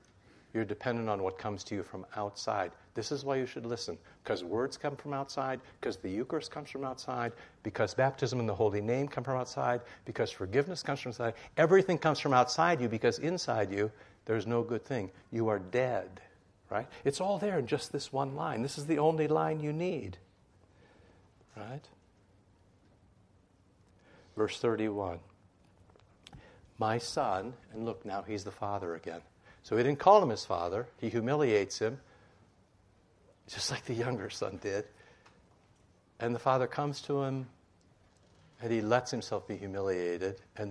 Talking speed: 165 wpm